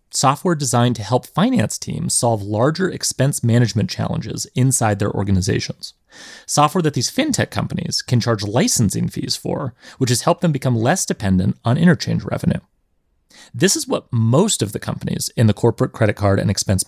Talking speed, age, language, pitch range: 170 wpm, 30-49, English, 115-160 Hz